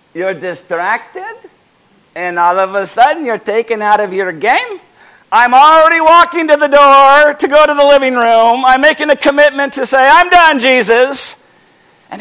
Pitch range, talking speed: 225-320 Hz, 170 wpm